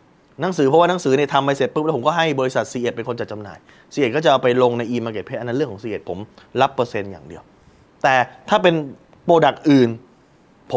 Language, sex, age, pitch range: Thai, male, 20-39, 110-150 Hz